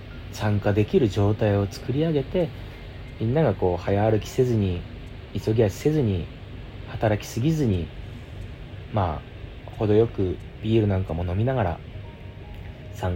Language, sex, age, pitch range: Japanese, male, 40-59, 95-115 Hz